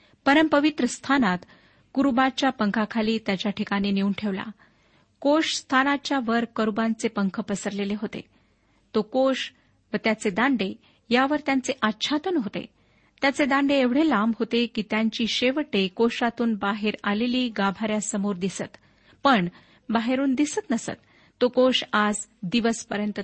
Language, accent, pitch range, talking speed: Marathi, native, 205-275 Hz, 115 wpm